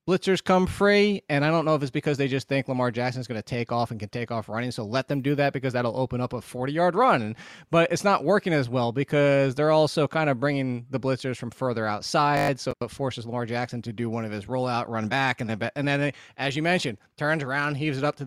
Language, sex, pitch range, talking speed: English, male, 125-165 Hz, 265 wpm